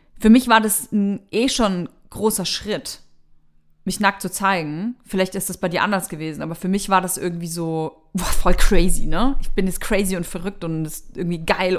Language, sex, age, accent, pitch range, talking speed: German, female, 30-49, German, 170-200 Hz, 215 wpm